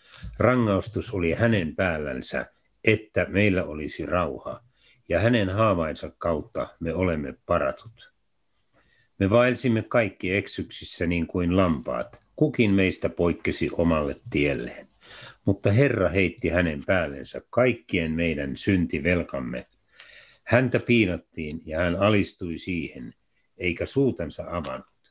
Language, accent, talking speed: Finnish, native, 105 wpm